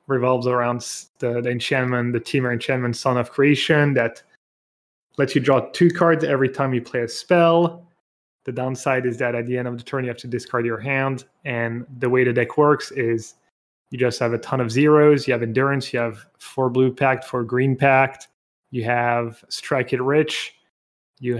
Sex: male